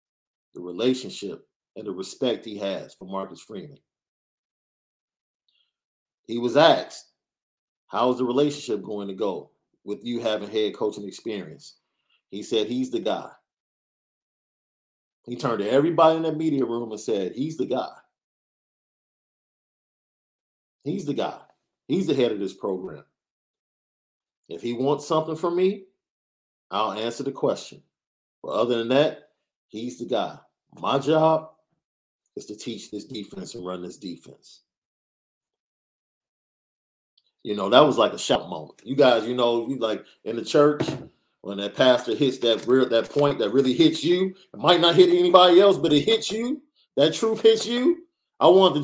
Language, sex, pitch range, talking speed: English, male, 110-170 Hz, 155 wpm